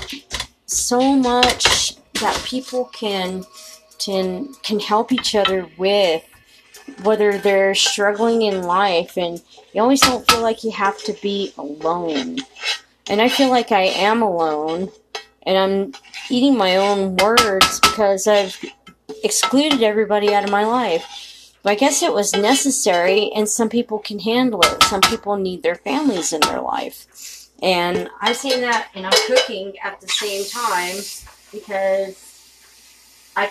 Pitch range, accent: 195-235 Hz, American